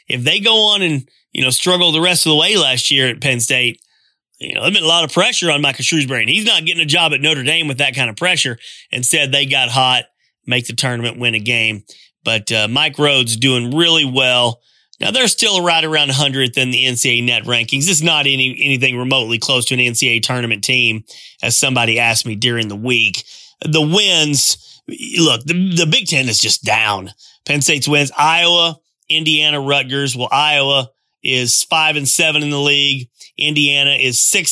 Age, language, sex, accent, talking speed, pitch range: 30-49, English, male, American, 205 wpm, 125-155 Hz